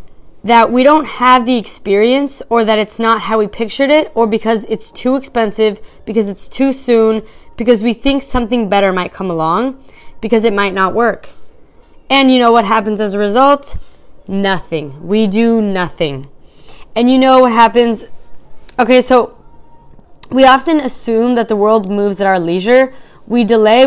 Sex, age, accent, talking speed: female, 20-39, American, 170 wpm